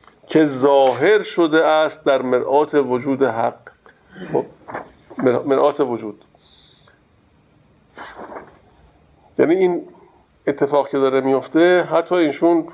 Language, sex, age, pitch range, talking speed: Persian, male, 50-69, 130-160 Hz, 85 wpm